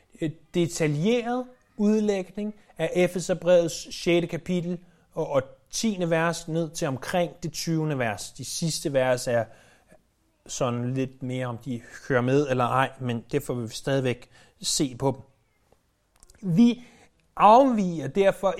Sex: male